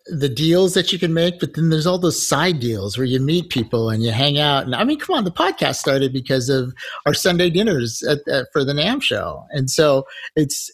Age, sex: 50-69, male